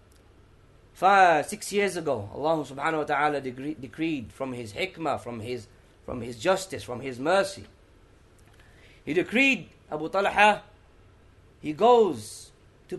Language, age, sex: English, 30-49, male